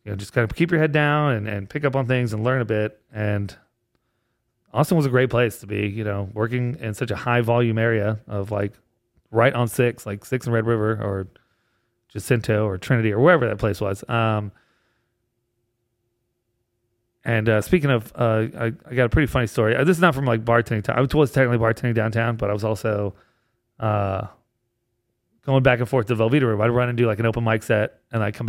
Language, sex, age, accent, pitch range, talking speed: English, male, 30-49, American, 110-125 Hz, 220 wpm